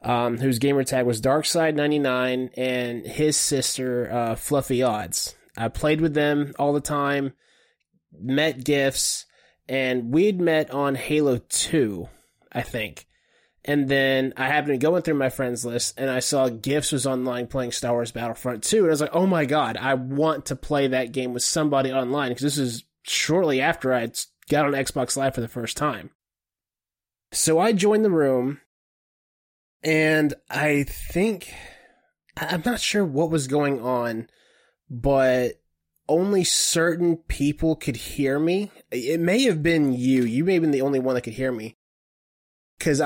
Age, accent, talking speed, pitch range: 20-39, American, 165 wpm, 125-155 Hz